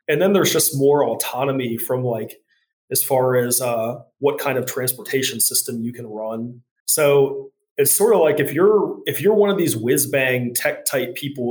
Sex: male